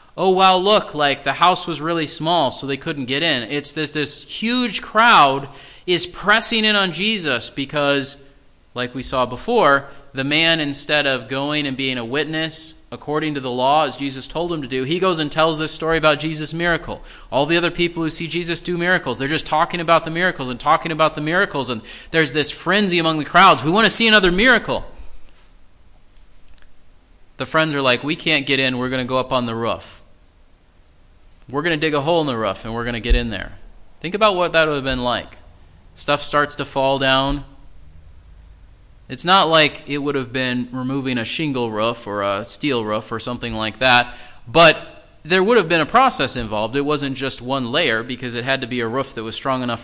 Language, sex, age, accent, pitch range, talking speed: English, male, 30-49, American, 120-160 Hz, 215 wpm